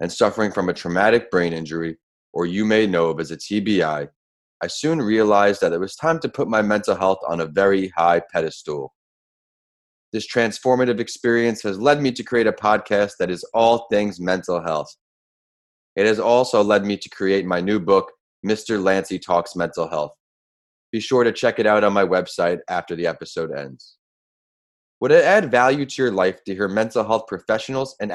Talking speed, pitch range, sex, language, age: 190 wpm, 95-130 Hz, male, English, 20-39